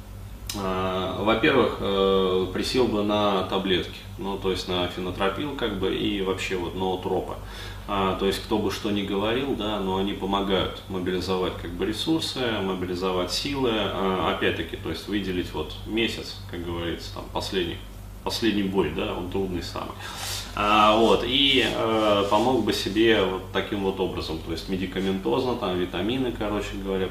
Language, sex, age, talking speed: Russian, male, 20-39, 155 wpm